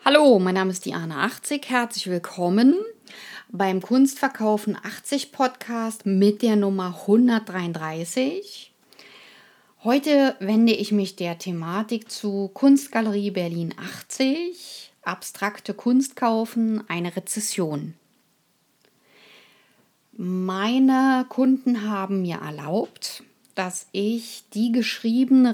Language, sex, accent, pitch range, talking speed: German, female, German, 185-245 Hz, 95 wpm